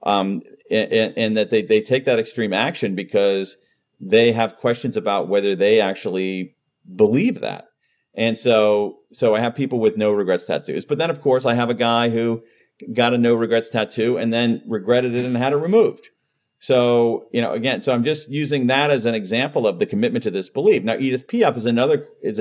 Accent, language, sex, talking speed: American, English, male, 205 wpm